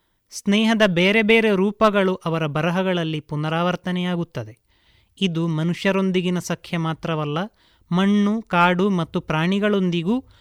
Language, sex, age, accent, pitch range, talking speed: Kannada, male, 30-49, native, 160-205 Hz, 85 wpm